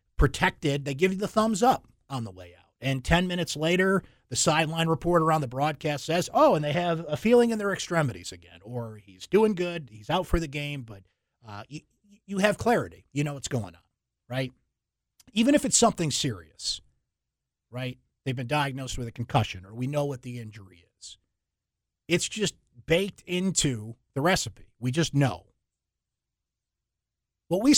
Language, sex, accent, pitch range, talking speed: English, male, American, 110-170 Hz, 175 wpm